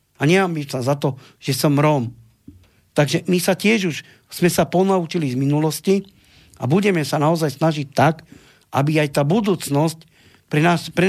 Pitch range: 135-185 Hz